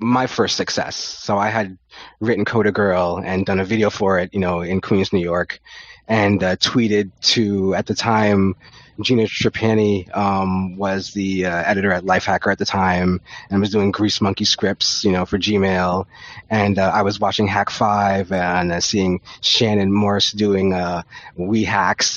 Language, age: English, 30-49